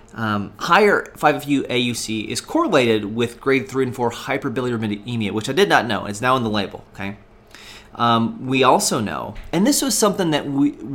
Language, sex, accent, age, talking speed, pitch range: English, male, American, 30-49, 180 wpm, 105-125 Hz